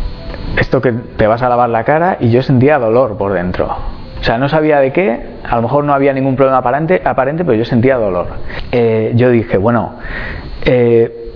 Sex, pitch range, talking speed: male, 115-145 Hz, 195 wpm